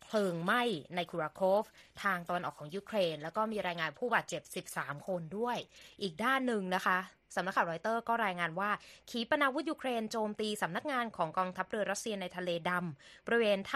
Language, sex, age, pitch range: Thai, female, 20-39, 180-230 Hz